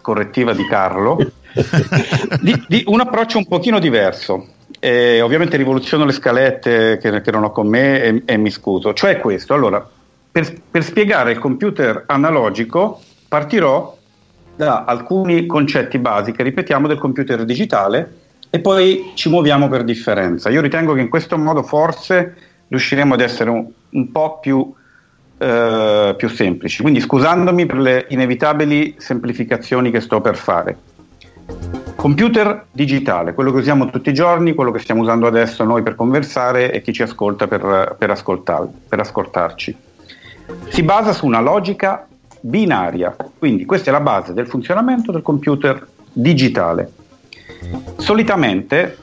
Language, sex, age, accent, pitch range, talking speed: Italian, male, 50-69, native, 115-165 Hz, 140 wpm